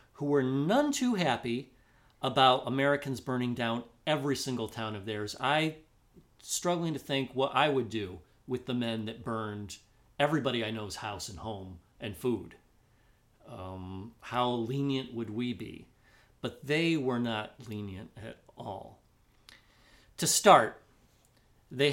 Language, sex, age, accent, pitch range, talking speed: English, male, 40-59, American, 105-130 Hz, 140 wpm